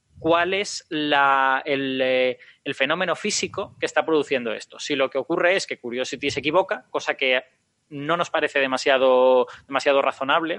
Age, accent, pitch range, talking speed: 20-39, Spanish, 135-170 Hz, 155 wpm